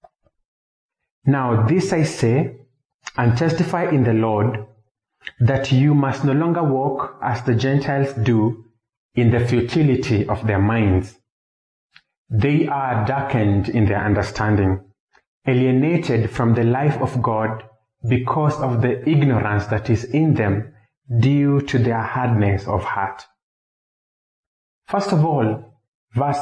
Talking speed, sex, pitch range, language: 125 wpm, male, 110-140 Hz, English